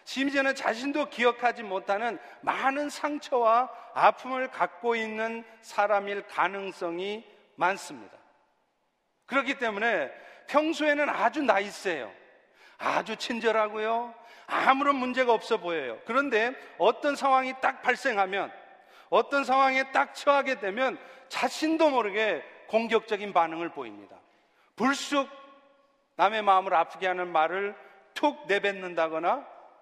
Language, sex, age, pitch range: Korean, male, 40-59, 200-265 Hz